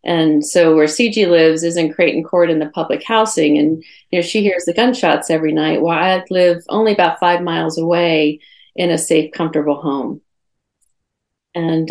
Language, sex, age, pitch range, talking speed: English, female, 40-59, 170-200 Hz, 180 wpm